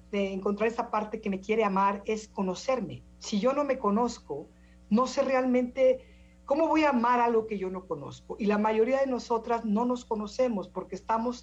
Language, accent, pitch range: Spanish, Mexican, 190-230 Hz